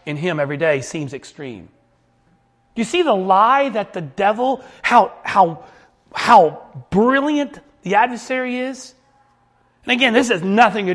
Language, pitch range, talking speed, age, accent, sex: English, 175-235 Hz, 150 wpm, 40-59, American, male